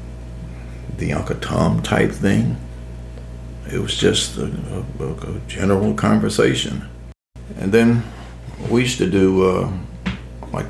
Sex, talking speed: male, 120 wpm